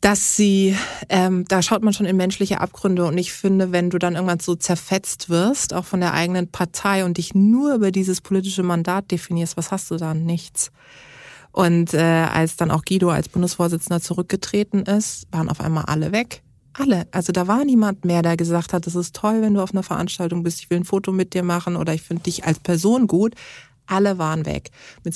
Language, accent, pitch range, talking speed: German, German, 170-195 Hz, 210 wpm